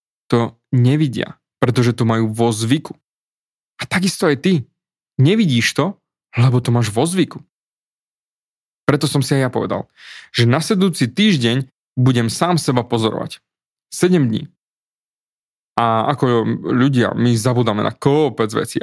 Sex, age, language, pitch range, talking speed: male, 20-39, Slovak, 125-170 Hz, 135 wpm